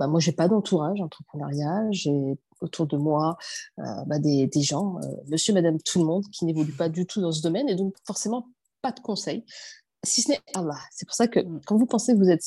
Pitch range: 160-215 Hz